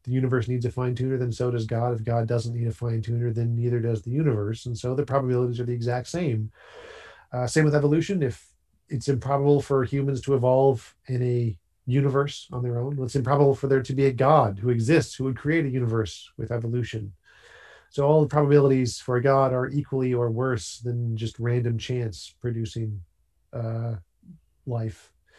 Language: English